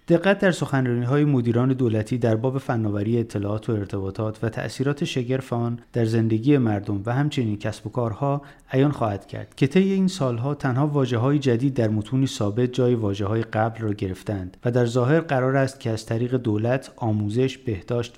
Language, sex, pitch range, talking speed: Persian, male, 110-140 Hz, 180 wpm